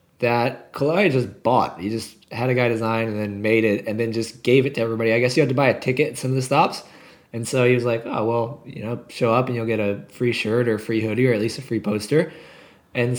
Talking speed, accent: 280 wpm, American